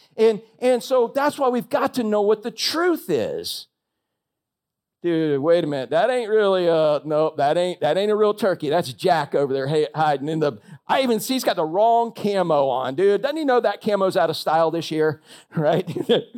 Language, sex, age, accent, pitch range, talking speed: English, male, 50-69, American, 185-255 Hz, 215 wpm